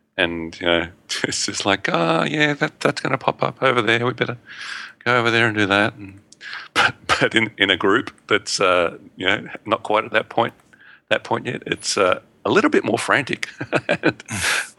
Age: 40-59